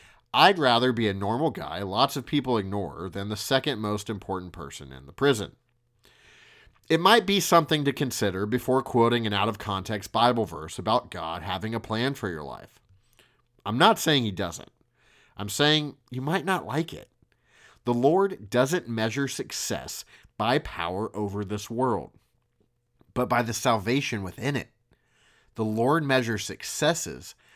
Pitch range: 105-130 Hz